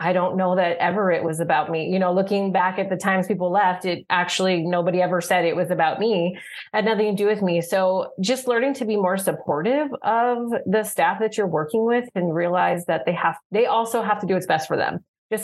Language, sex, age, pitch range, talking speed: English, female, 30-49, 175-225 Hz, 240 wpm